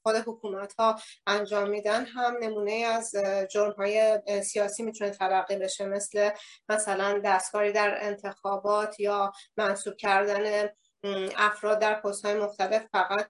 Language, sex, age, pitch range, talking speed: Persian, female, 30-49, 195-215 Hz, 120 wpm